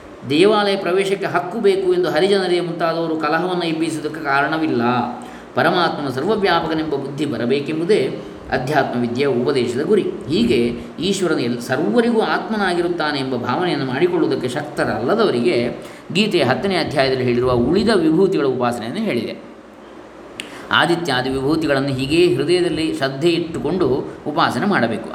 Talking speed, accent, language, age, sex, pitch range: 100 wpm, native, Kannada, 20-39, male, 130-180 Hz